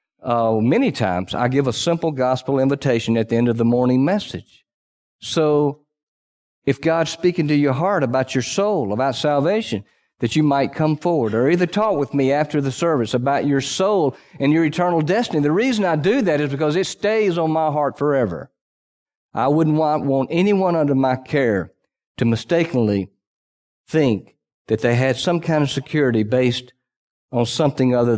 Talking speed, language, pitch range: 175 wpm, English, 120-160 Hz